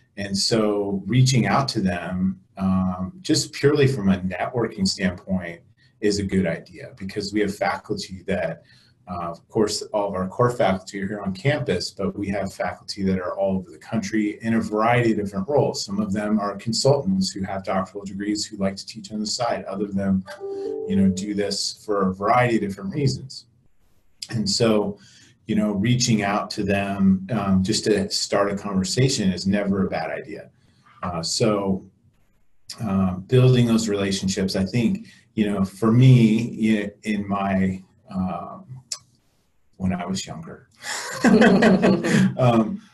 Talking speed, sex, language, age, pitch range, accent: 165 wpm, male, English, 30-49, 95-120 Hz, American